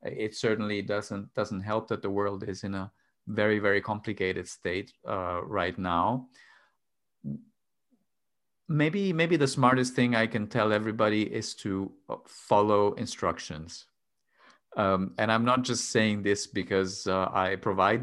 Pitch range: 95-115 Hz